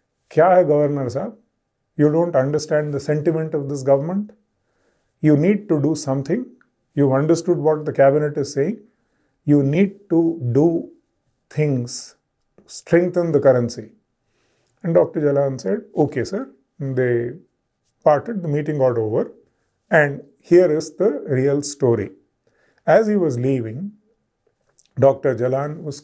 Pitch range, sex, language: 130-165 Hz, male, English